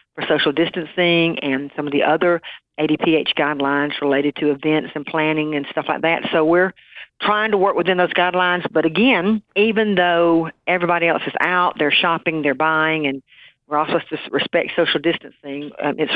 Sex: female